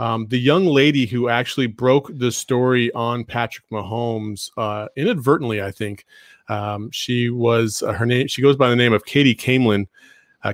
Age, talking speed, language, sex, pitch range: 30-49, 175 wpm, English, male, 115-135 Hz